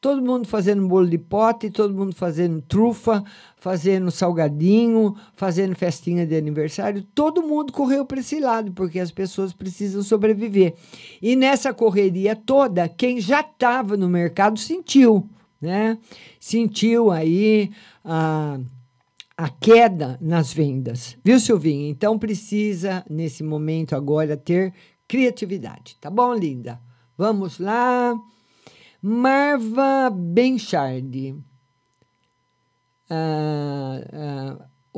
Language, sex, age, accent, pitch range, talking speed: Portuguese, male, 50-69, Brazilian, 140-205 Hz, 105 wpm